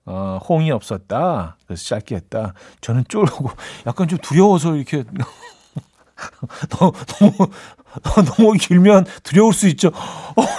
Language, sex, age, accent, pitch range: Korean, male, 40-59, native, 115-175 Hz